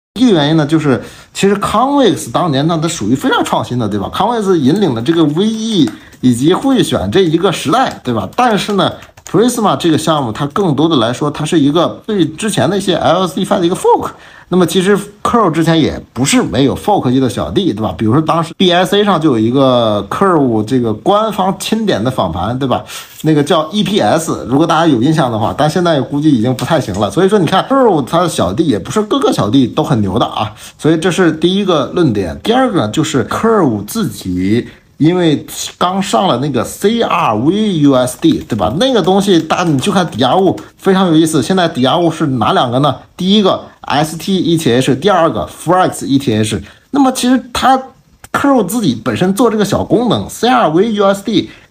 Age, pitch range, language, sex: 50-69, 135-200 Hz, English, male